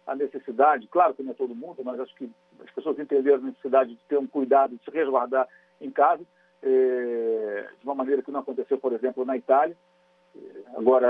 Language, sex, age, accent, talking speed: Portuguese, male, 50-69, Brazilian, 190 wpm